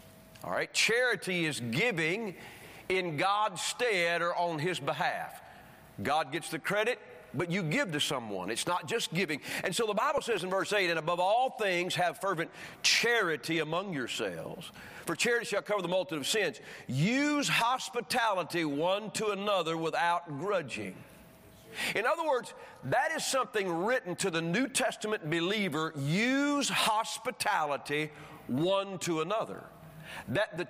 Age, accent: 40-59, American